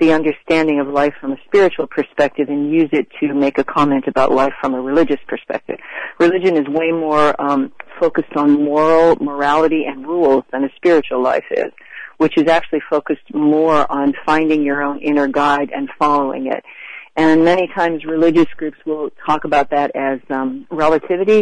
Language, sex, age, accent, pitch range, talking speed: English, female, 40-59, American, 140-165 Hz, 175 wpm